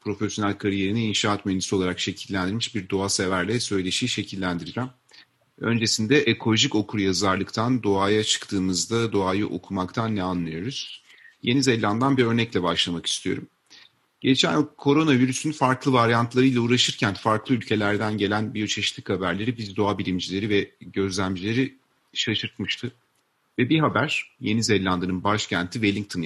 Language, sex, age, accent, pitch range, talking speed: Turkish, male, 40-59, native, 95-120 Hz, 115 wpm